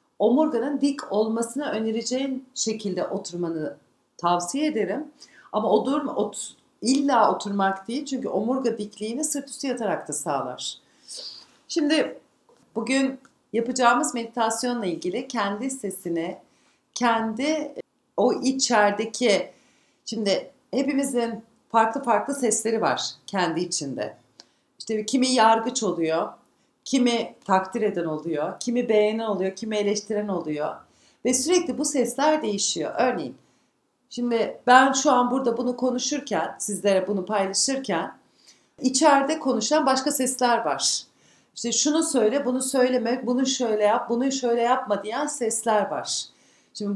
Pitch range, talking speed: 210-265 Hz, 115 wpm